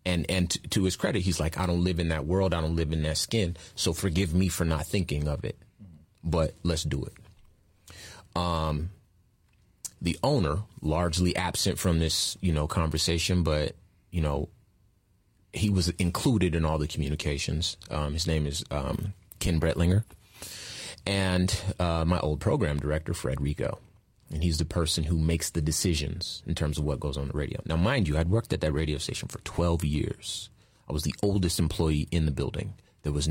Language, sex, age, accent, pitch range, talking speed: English, male, 30-49, American, 80-95 Hz, 185 wpm